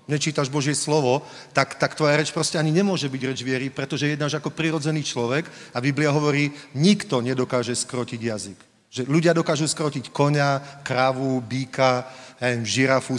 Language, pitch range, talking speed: Slovak, 130-160 Hz, 150 wpm